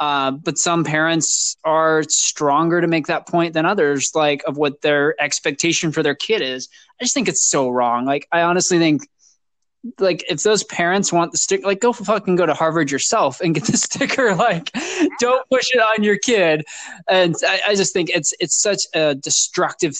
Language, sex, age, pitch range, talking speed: English, male, 20-39, 145-180 Hz, 200 wpm